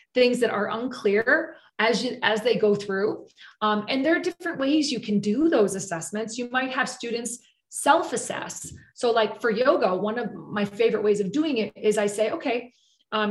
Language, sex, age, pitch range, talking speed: English, female, 30-49, 205-260 Hz, 195 wpm